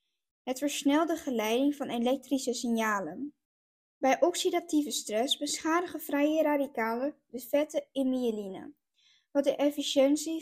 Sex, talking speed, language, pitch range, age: female, 115 wpm, Dutch, 250-295 Hz, 20-39